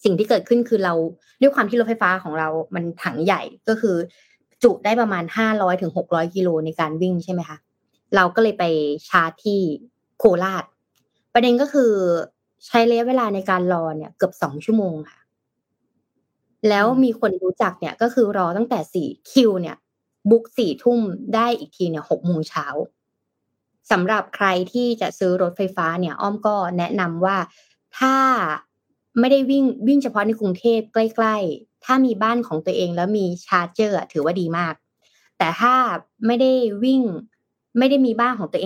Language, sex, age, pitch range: Thai, female, 20-39, 175-235 Hz